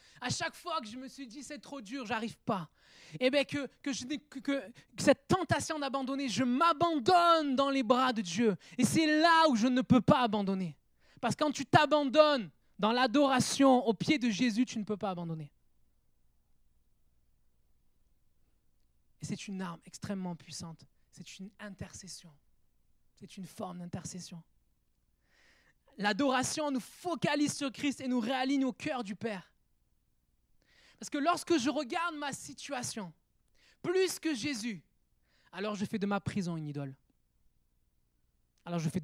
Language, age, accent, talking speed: French, 20-39, French, 155 wpm